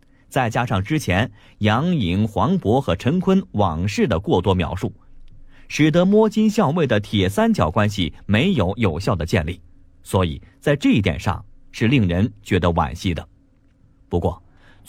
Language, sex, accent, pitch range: Chinese, male, native, 95-140 Hz